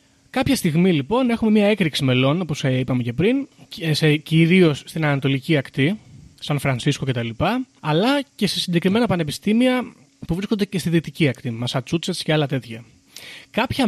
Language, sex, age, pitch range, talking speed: Greek, male, 20-39, 135-175 Hz, 145 wpm